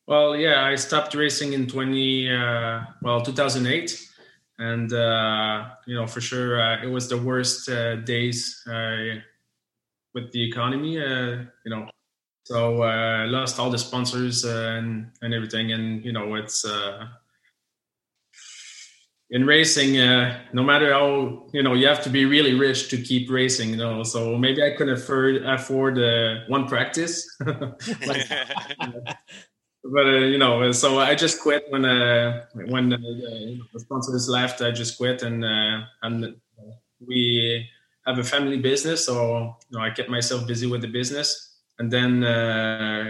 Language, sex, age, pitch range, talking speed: English, male, 20-39, 115-130 Hz, 160 wpm